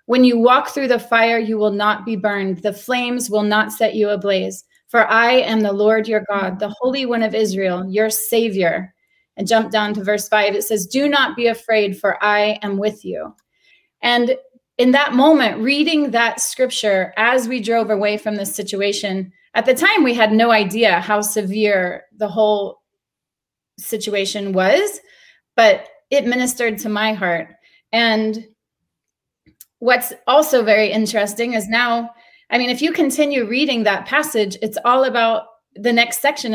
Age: 30-49